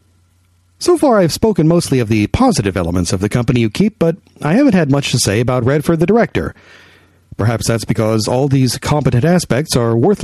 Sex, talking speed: male, 200 wpm